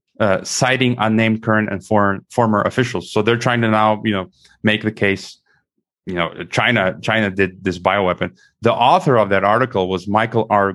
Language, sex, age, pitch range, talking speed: English, male, 30-49, 105-130 Hz, 185 wpm